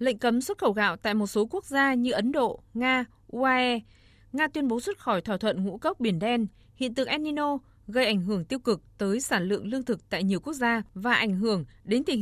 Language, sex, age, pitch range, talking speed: Vietnamese, female, 20-39, 205-260 Hz, 235 wpm